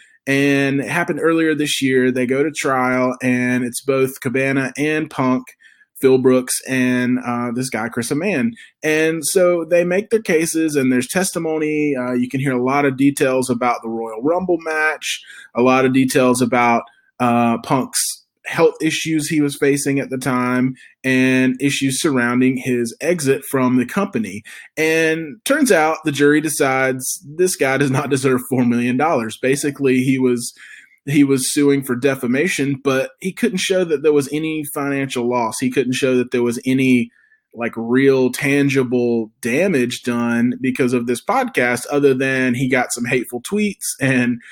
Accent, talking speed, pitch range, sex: American, 165 wpm, 125-150 Hz, male